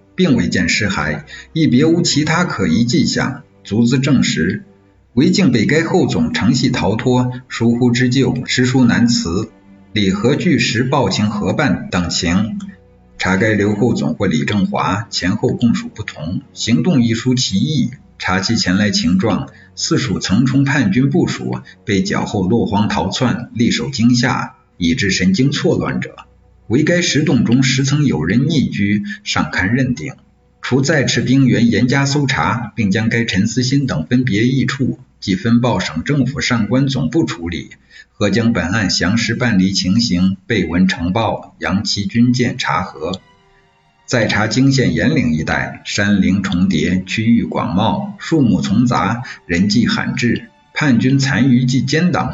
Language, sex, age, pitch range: Chinese, male, 50-69, 100-130 Hz